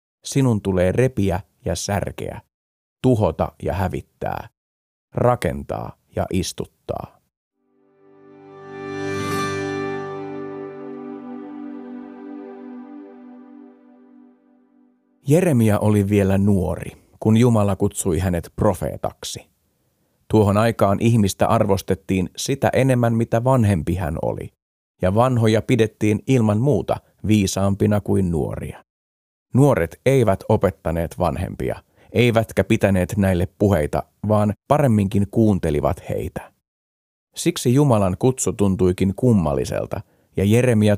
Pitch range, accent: 95-120 Hz, native